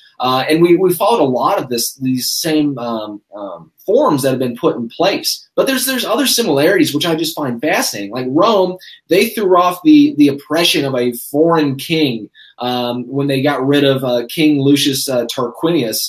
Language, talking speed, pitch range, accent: English, 200 wpm, 125-160 Hz, American